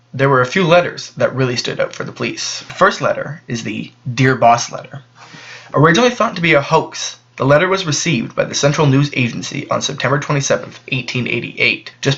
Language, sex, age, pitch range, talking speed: English, male, 20-39, 120-145 Hz, 195 wpm